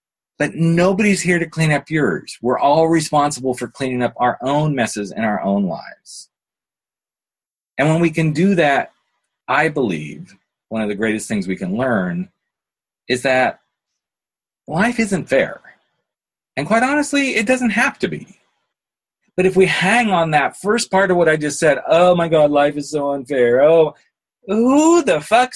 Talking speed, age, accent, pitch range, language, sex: 170 wpm, 40-59, American, 125-180 Hz, English, male